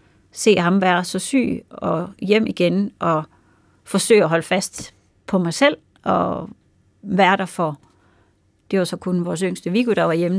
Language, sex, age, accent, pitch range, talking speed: Danish, female, 30-49, native, 145-195 Hz, 175 wpm